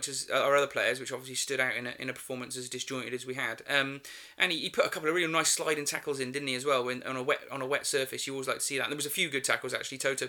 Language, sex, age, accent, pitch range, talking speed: English, male, 20-39, British, 130-150 Hz, 345 wpm